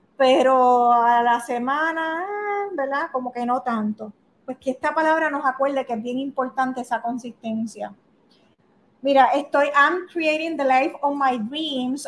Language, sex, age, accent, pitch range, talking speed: Spanish, female, 30-49, American, 240-290 Hz, 150 wpm